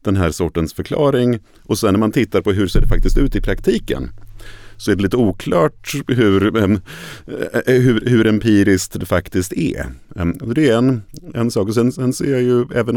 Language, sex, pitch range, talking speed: Swedish, male, 85-110 Hz, 190 wpm